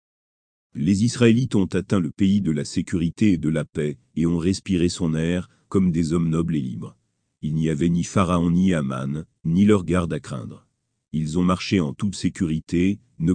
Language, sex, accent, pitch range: French, male, French, 80-100 Hz